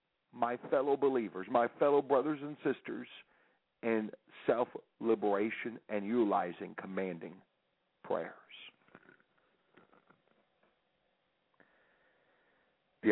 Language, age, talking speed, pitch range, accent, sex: English, 50-69, 70 wpm, 105-135 Hz, American, male